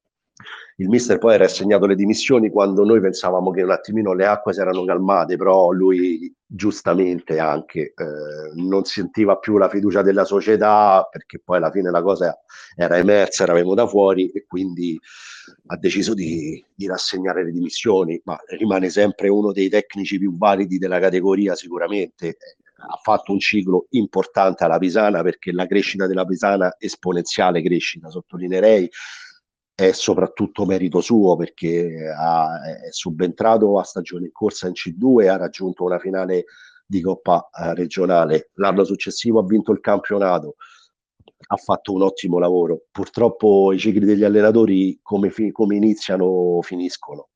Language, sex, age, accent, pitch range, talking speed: Italian, male, 50-69, native, 90-105 Hz, 150 wpm